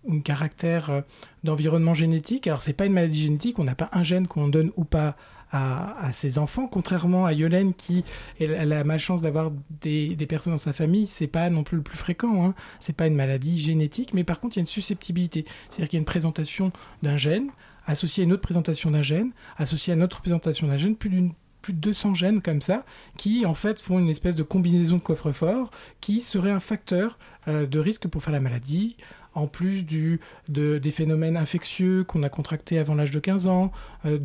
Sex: male